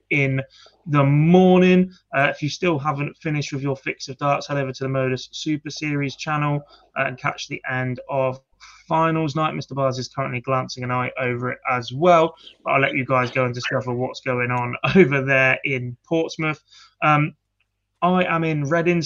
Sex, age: male, 20-39